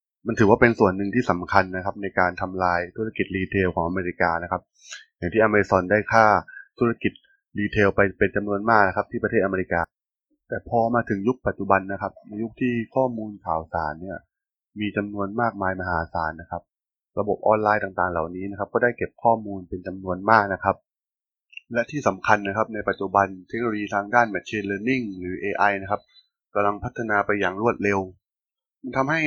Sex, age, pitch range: male, 20-39, 95-110 Hz